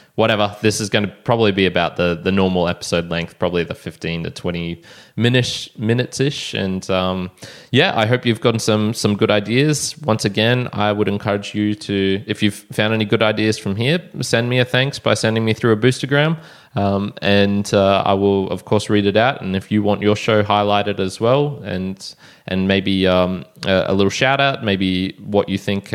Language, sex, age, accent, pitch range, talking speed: English, male, 20-39, Australian, 95-115 Hz, 200 wpm